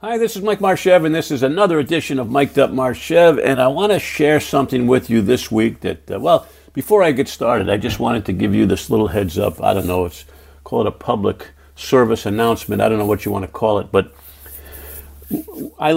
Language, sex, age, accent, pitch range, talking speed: English, male, 50-69, American, 95-130 Hz, 230 wpm